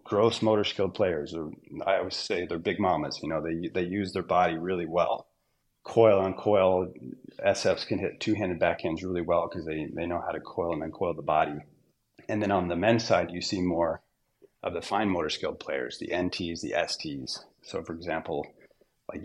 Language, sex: English, male